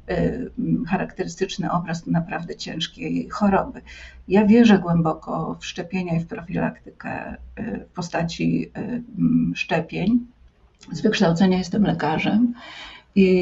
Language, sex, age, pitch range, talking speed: Polish, female, 50-69, 180-220 Hz, 95 wpm